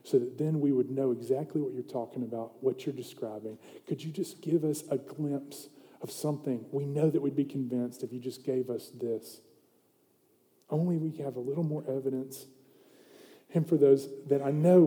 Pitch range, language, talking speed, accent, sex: 130-160 Hz, English, 195 wpm, American, male